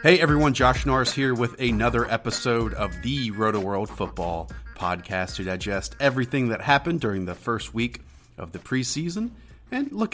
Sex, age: male, 30-49